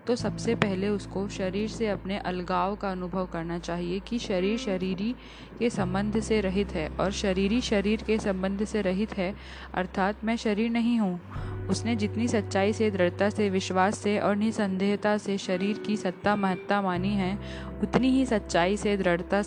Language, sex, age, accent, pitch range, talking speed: Hindi, female, 10-29, native, 180-210 Hz, 170 wpm